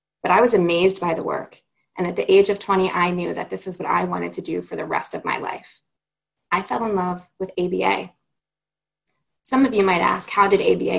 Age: 20-39